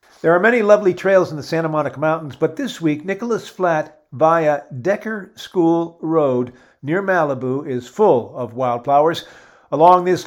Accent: American